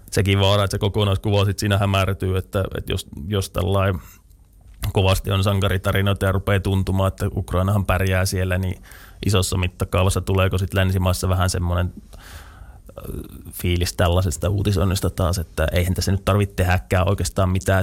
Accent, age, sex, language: native, 20-39, male, Finnish